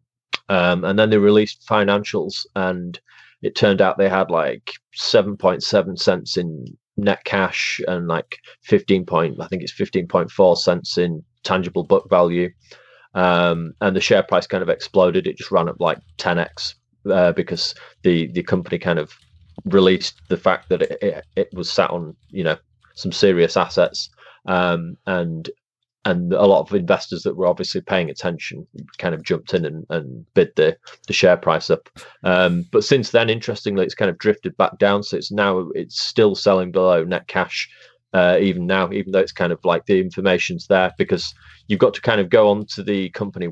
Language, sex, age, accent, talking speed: English, male, 30-49, British, 185 wpm